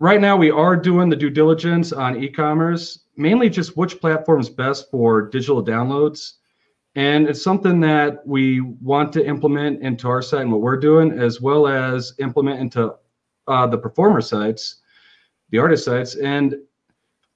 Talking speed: 165 wpm